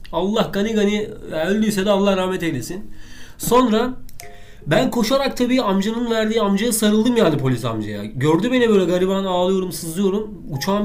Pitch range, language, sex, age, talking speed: 165-230 Hz, Turkish, male, 30-49, 145 wpm